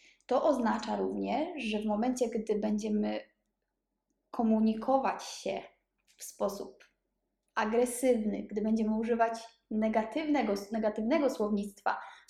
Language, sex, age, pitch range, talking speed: Polish, female, 20-39, 215-250 Hz, 100 wpm